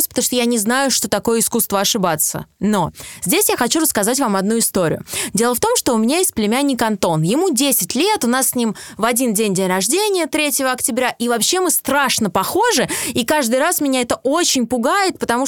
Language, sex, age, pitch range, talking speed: Russian, female, 20-39, 215-290 Hz, 205 wpm